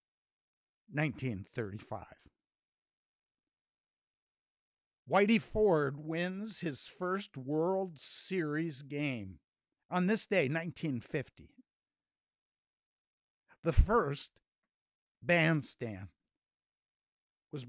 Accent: American